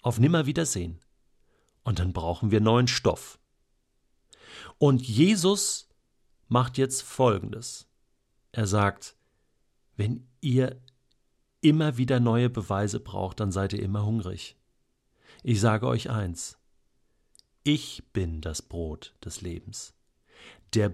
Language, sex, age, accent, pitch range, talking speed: German, male, 50-69, German, 100-130 Hz, 110 wpm